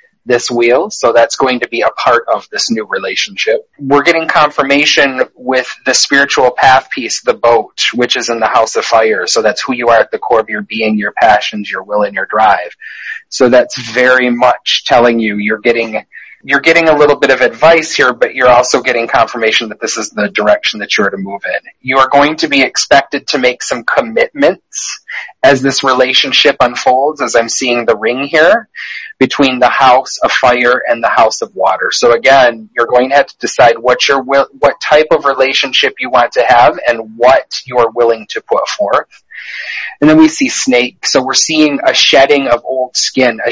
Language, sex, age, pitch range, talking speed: English, male, 30-49, 120-140 Hz, 210 wpm